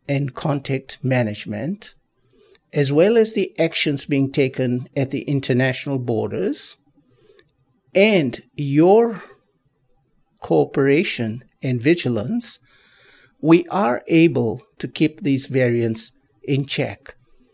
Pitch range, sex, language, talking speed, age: 130-170 Hz, male, English, 95 wpm, 60-79